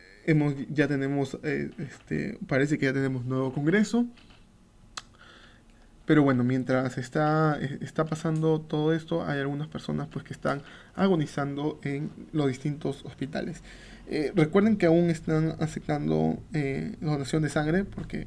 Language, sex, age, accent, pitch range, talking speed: Spanish, male, 20-39, Venezuelan, 135-160 Hz, 135 wpm